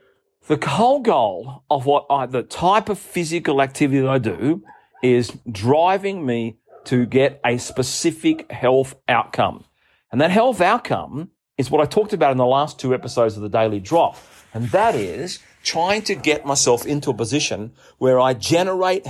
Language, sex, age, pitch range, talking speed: English, male, 40-59, 130-200 Hz, 170 wpm